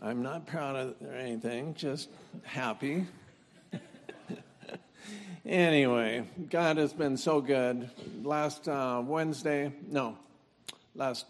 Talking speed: 95 wpm